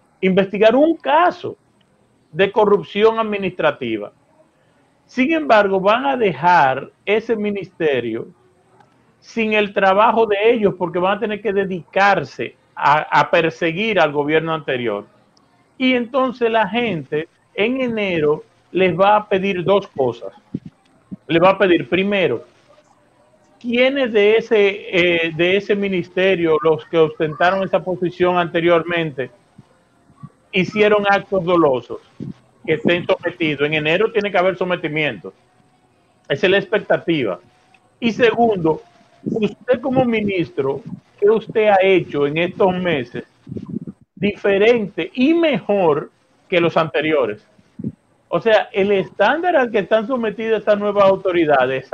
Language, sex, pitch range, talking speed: Spanish, male, 170-220 Hz, 120 wpm